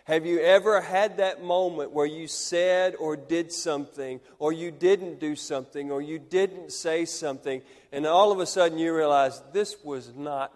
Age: 40-59